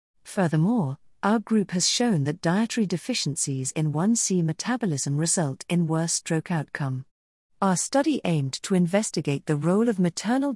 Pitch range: 155-215 Hz